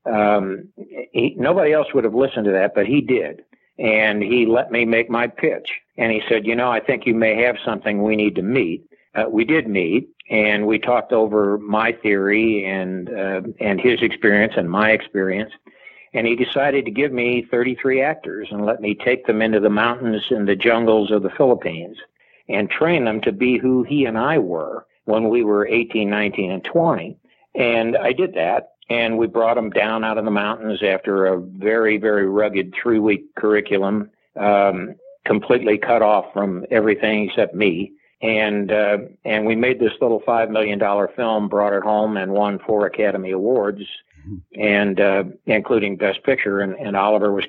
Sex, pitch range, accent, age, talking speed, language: male, 105-115 Hz, American, 60-79, 185 wpm, English